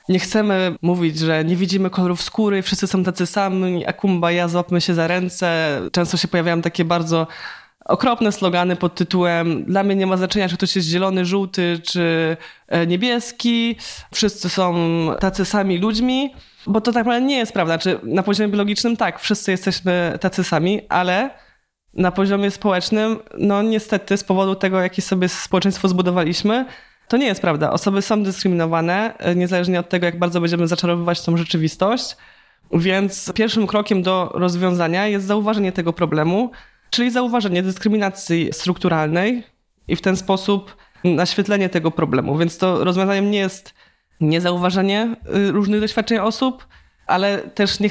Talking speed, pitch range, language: 150 wpm, 175-205 Hz, Polish